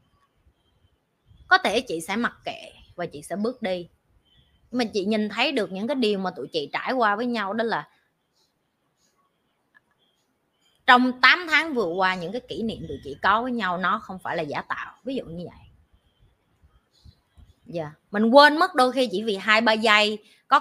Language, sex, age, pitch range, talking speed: Vietnamese, female, 20-39, 170-240 Hz, 185 wpm